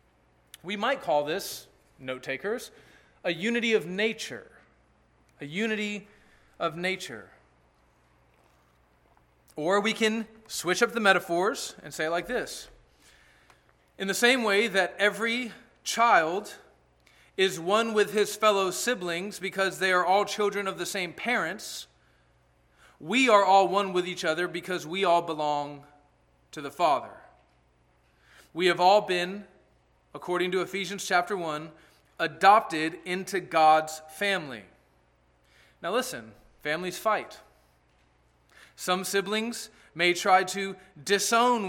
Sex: male